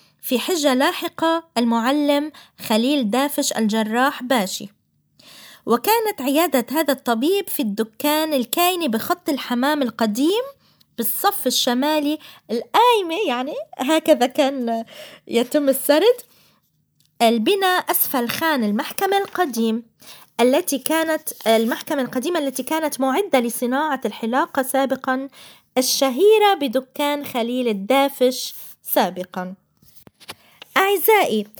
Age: 20-39